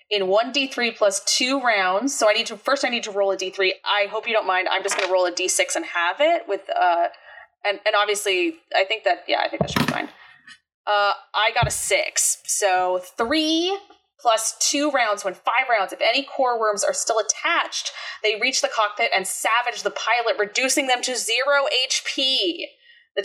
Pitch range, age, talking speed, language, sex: 190-260 Hz, 20-39, 205 wpm, English, female